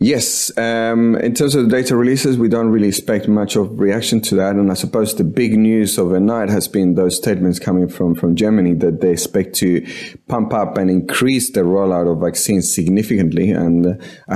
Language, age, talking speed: English, 30-49, 195 wpm